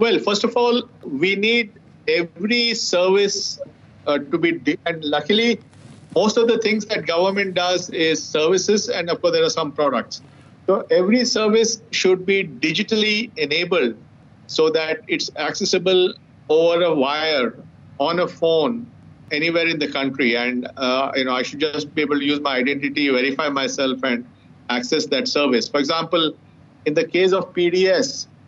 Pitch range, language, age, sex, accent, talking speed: 145-195 Hz, English, 50-69, male, Indian, 160 wpm